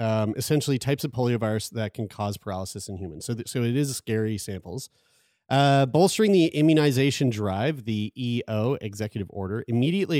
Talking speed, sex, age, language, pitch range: 160 wpm, male, 30-49, English, 105-135 Hz